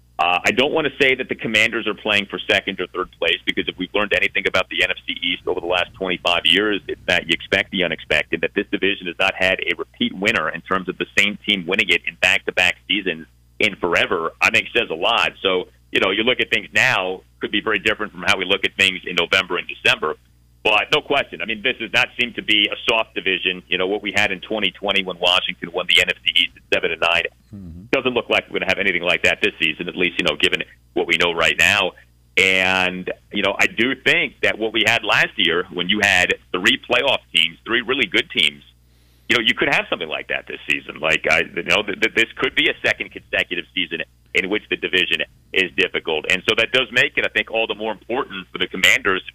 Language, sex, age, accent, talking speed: English, male, 40-59, American, 245 wpm